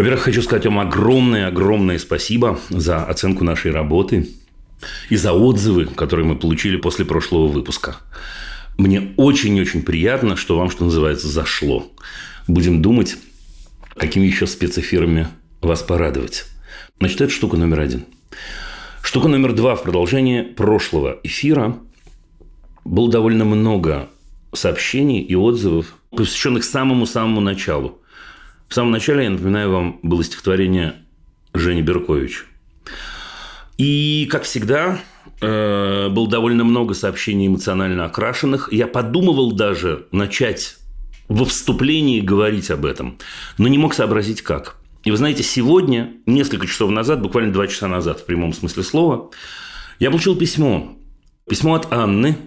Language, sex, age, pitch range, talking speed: Russian, male, 40-59, 85-120 Hz, 125 wpm